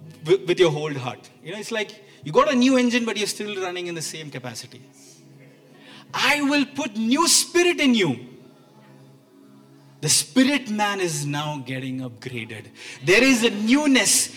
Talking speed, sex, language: 165 wpm, male, English